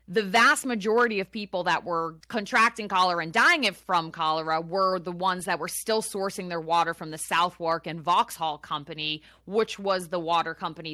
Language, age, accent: English, 20-39, American